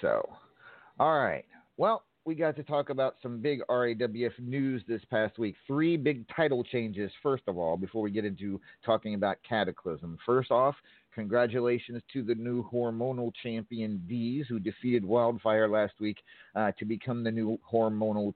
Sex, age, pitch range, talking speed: male, 40-59, 100-125 Hz, 165 wpm